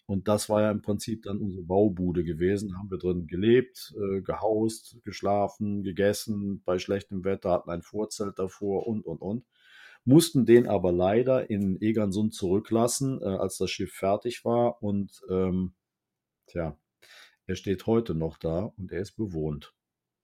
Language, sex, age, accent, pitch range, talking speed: German, male, 50-69, German, 95-115 Hz, 155 wpm